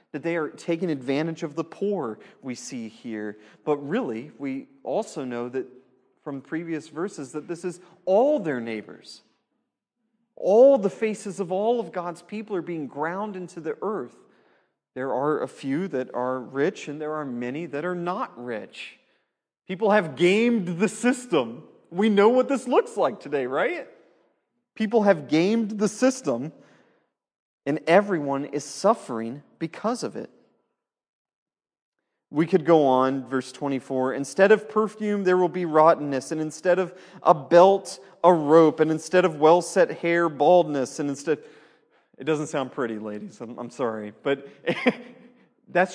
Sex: male